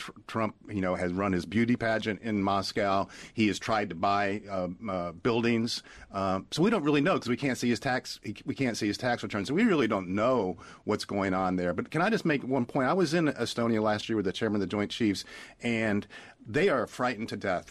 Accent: American